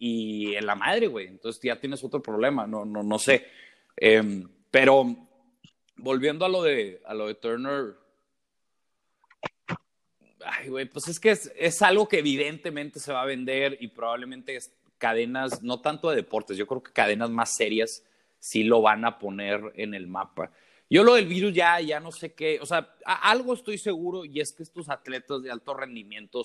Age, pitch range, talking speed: 30-49, 110-140 Hz, 190 wpm